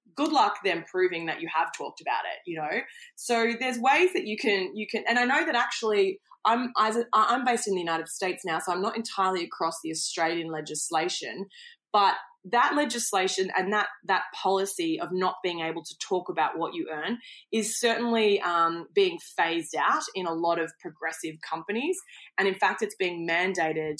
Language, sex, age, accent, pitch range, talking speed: English, female, 20-39, Australian, 170-250 Hz, 190 wpm